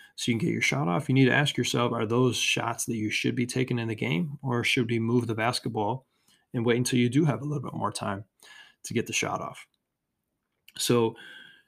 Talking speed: 235 wpm